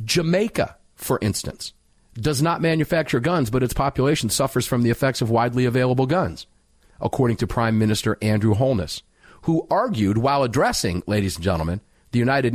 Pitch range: 100-150 Hz